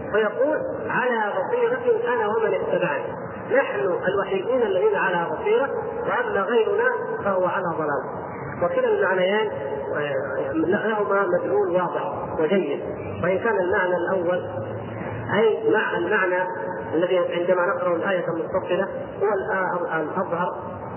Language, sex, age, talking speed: Arabic, male, 40-59, 105 wpm